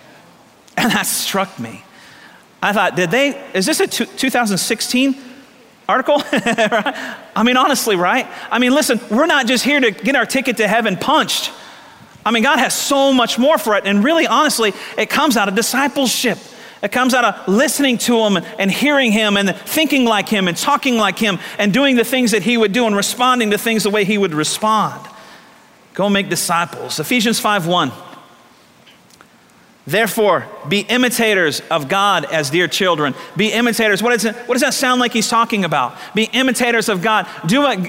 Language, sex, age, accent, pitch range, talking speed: English, male, 40-59, American, 195-250 Hz, 185 wpm